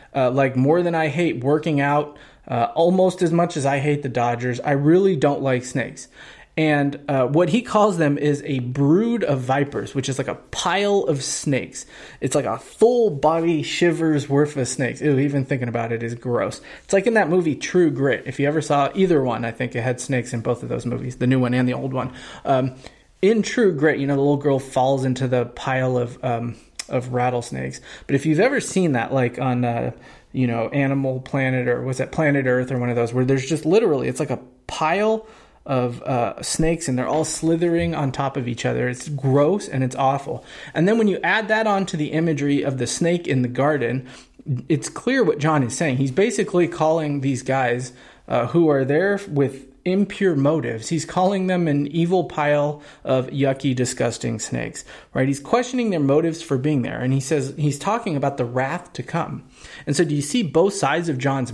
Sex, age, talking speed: male, 20-39, 215 wpm